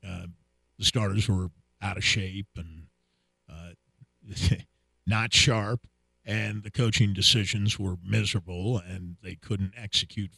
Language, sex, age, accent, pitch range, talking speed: English, male, 50-69, American, 90-120 Hz, 120 wpm